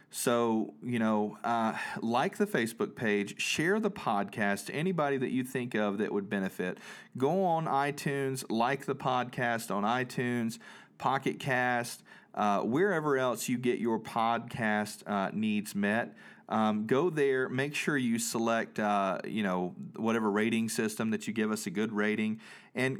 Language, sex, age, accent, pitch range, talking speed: English, male, 40-59, American, 105-135 Hz, 160 wpm